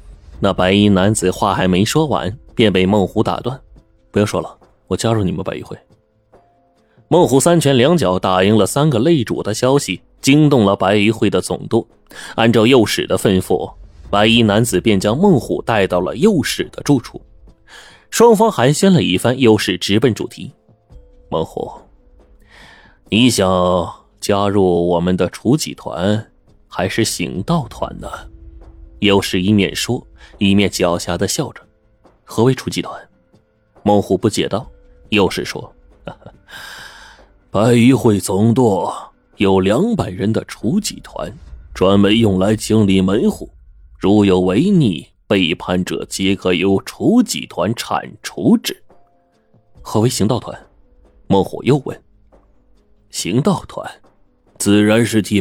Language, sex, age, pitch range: Chinese, male, 20-39, 95-115 Hz